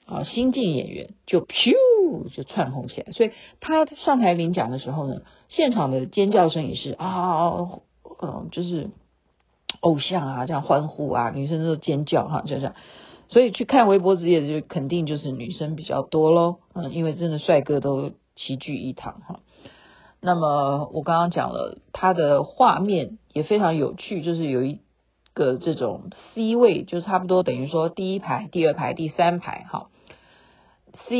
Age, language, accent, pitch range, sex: 50-69, Chinese, native, 150-200 Hz, female